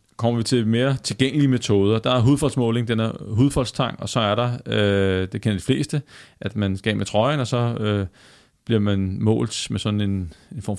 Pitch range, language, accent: 105-125 Hz, Danish, native